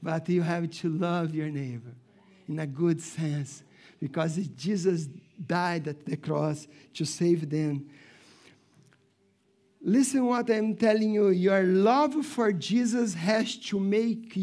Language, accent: English, Brazilian